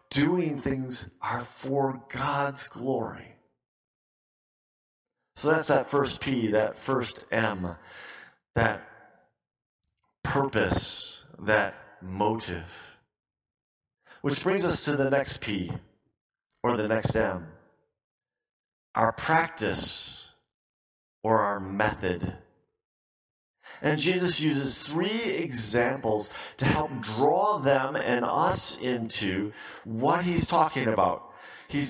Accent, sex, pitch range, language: American, male, 115-170 Hz, English